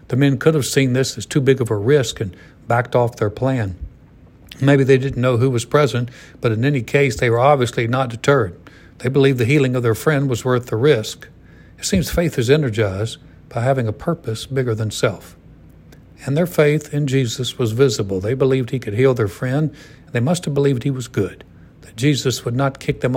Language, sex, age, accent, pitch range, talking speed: English, male, 60-79, American, 110-135 Hz, 215 wpm